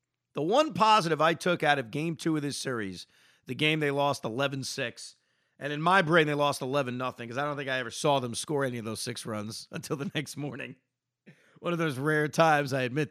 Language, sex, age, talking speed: English, male, 40-59, 225 wpm